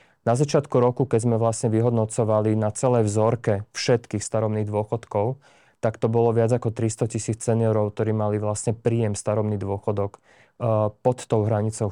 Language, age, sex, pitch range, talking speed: Slovak, 30-49, male, 110-120 Hz, 150 wpm